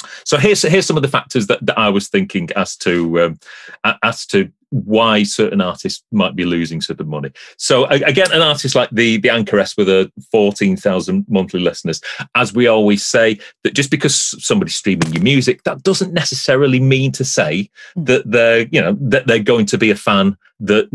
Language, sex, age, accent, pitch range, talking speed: English, male, 30-49, British, 90-135 Hz, 195 wpm